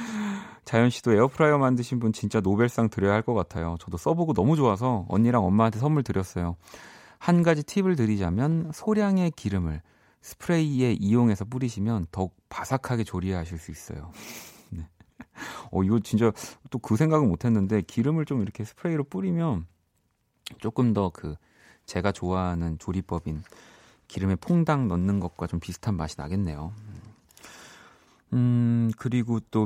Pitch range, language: 90-130 Hz, Korean